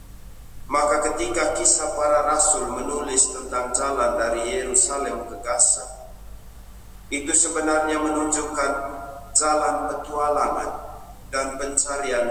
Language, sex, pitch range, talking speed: Indonesian, male, 105-150 Hz, 80 wpm